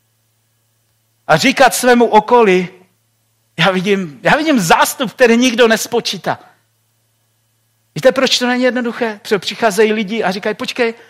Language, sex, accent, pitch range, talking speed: Czech, male, native, 160-245 Hz, 125 wpm